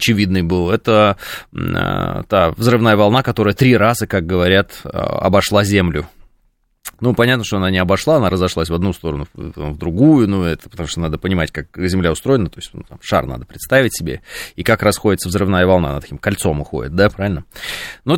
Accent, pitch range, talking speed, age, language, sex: native, 90-115 Hz, 180 wpm, 20-39, Russian, male